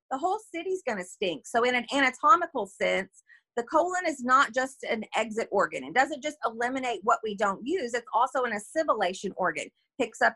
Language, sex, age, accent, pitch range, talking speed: English, female, 40-59, American, 230-305 Hz, 190 wpm